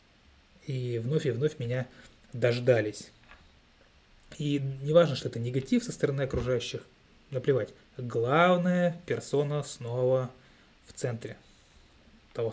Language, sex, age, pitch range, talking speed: Russian, male, 20-39, 120-155 Hz, 105 wpm